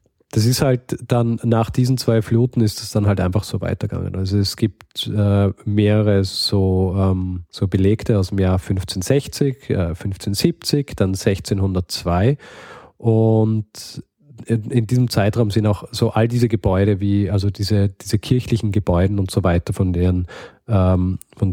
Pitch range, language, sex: 100-115 Hz, German, male